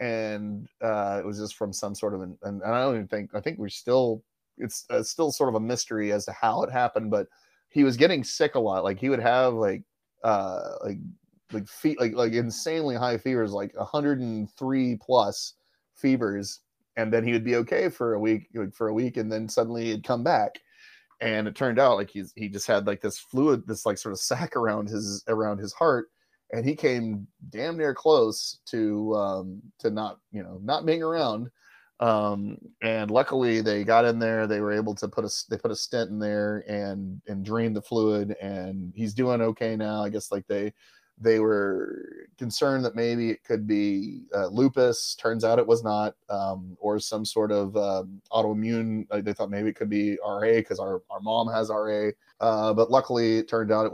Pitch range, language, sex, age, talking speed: 105-120 Hz, English, male, 30-49, 210 wpm